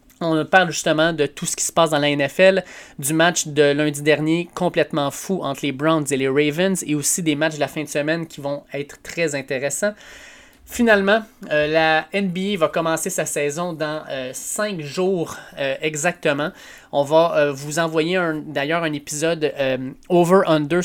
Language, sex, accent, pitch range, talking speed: French, male, Canadian, 145-170 Hz, 180 wpm